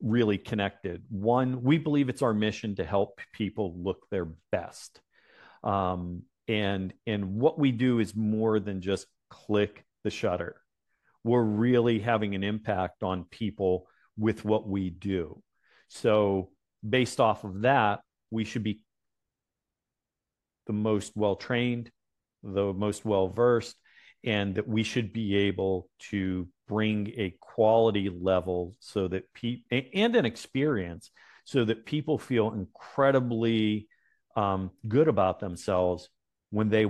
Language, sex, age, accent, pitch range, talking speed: English, male, 40-59, American, 95-120 Hz, 130 wpm